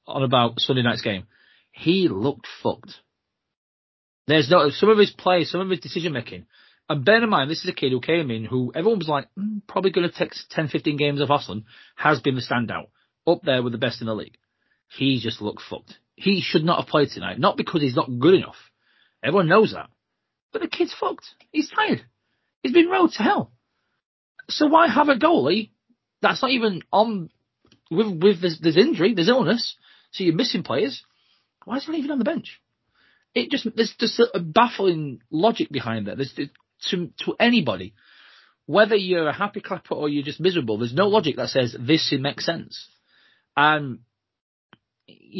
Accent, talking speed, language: British, 190 wpm, English